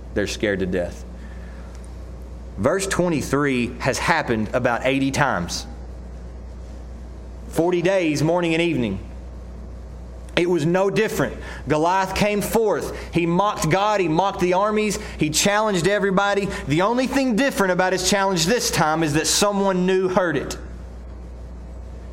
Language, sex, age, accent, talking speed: English, male, 30-49, American, 130 wpm